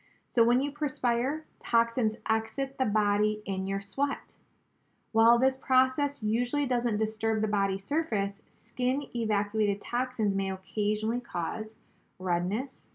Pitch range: 200-240 Hz